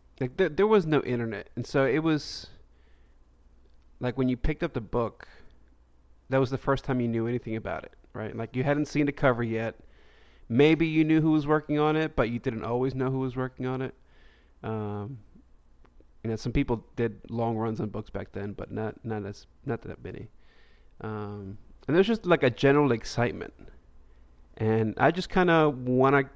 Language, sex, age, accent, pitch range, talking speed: English, male, 30-49, American, 105-135 Hz, 195 wpm